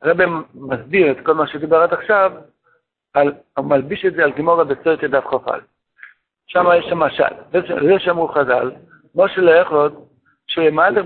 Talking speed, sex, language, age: 150 wpm, male, Hebrew, 60-79